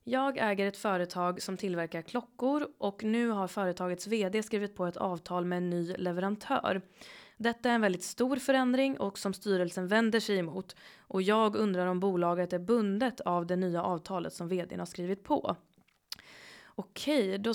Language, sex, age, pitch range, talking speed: Swedish, female, 20-39, 180-225 Hz, 170 wpm